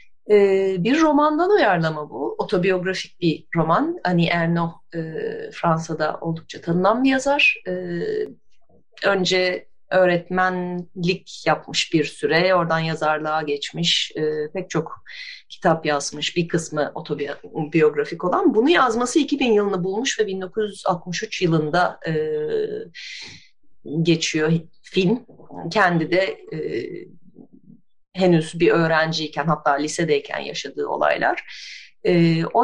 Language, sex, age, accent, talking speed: Turkish, female, 30-49, native, 105 wpm